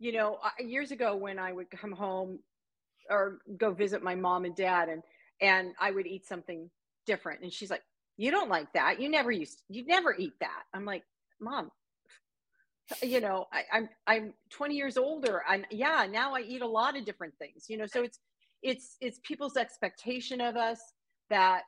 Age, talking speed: 40-59, 195 wpm